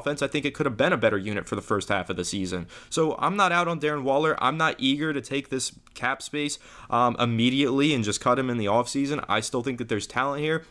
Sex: male